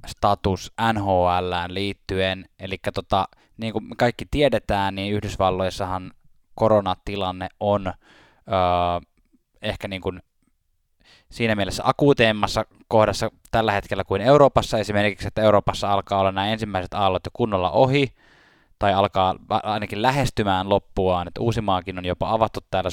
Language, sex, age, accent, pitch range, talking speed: Finnish, male, 10-29, native, 95-110 Hz, 115 wpm